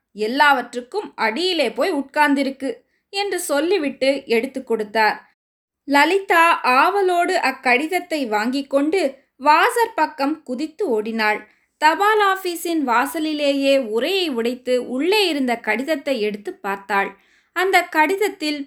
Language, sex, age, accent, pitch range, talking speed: Tamil, female, 20-39, native, 235-335 Hz, 95 wpm